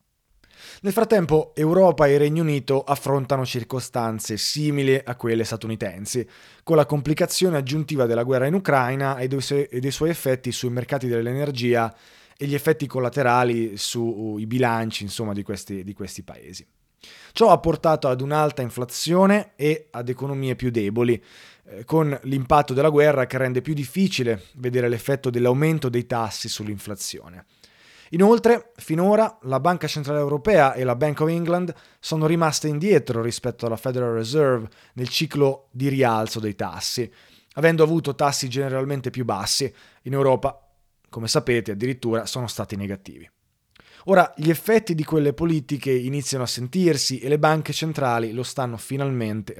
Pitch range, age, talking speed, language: 120-155 Hz, 20-39, 140 wpm, Italian